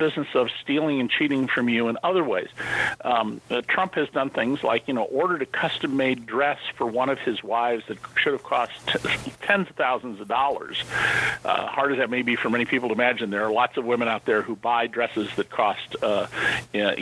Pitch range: 125-175 Hz